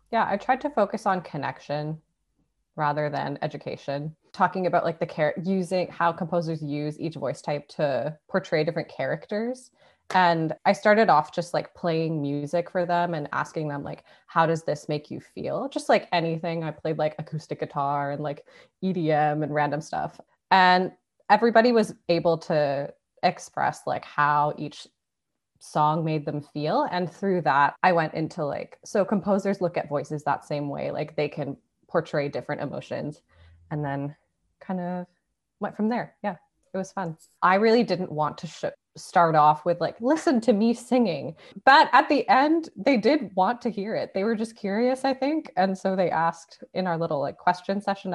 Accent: American